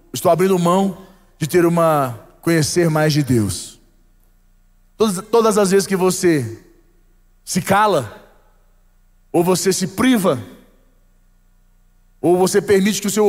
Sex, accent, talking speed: male, Brazilian, 125 wpm